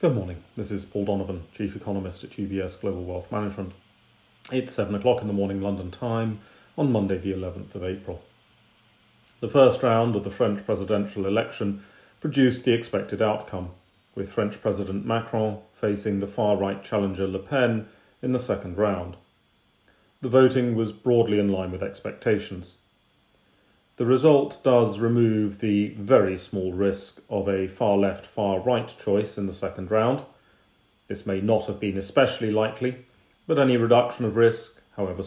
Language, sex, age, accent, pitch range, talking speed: English, male, 40-59, British, 95-115 Hz, 155 wpm